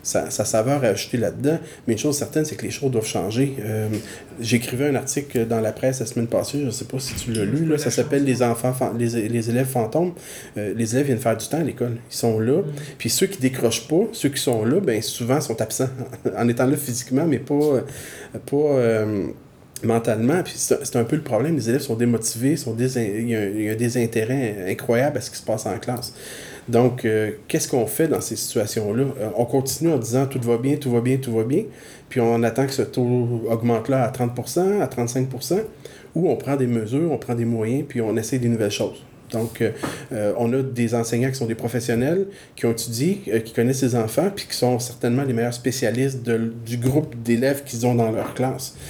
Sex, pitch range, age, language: male, 115-135 Hz, 30-49, French